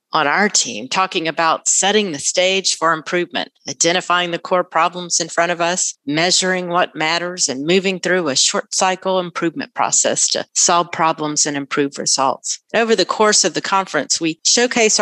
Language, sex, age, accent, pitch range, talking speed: English, female, 40-59, American, 155-195 Hz, 170 wpm